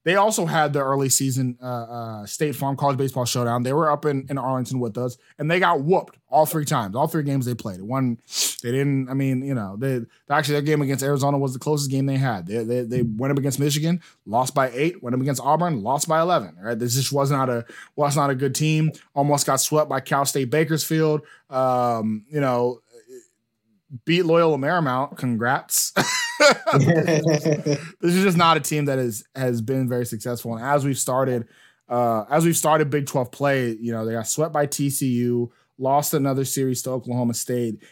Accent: American